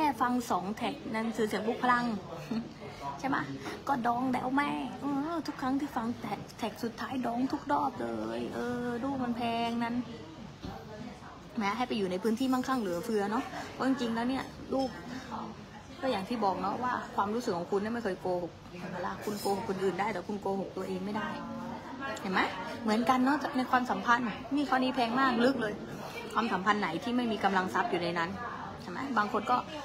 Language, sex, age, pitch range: English, female, 20-39, 195-250 Hz